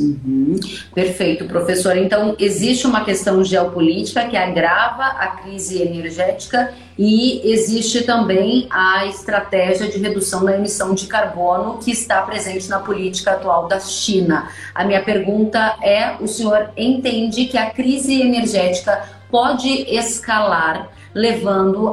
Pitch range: 185-230 Hz